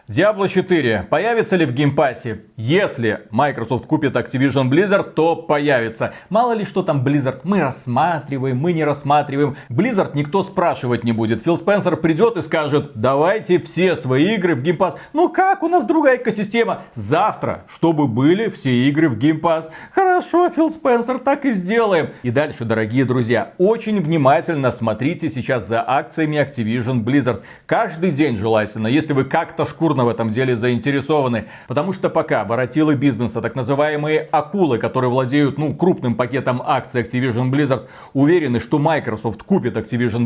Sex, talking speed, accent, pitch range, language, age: male, 150 wpm, native, 125-180 Hz, Russian, 40-59